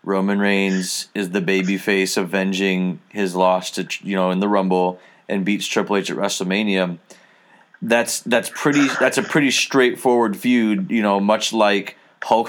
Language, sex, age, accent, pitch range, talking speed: English, male, 30-49, American, 95-115 Hz, 160 wpm